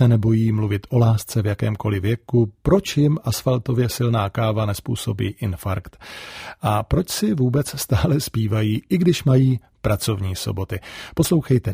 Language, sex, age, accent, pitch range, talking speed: Czech, male, 40-59, native, 110-130 Hz, 135 wpm